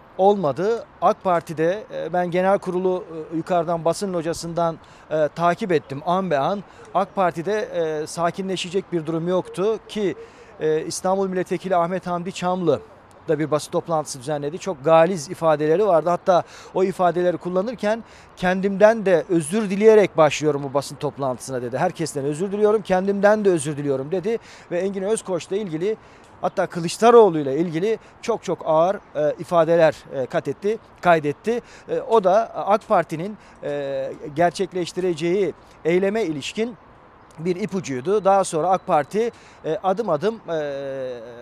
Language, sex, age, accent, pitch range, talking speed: Turkish, male, 40-59, native, 160-200 Hz, 135 wpm